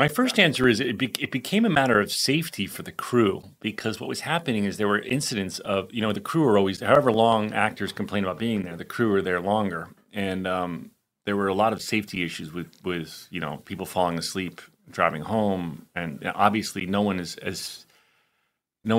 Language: English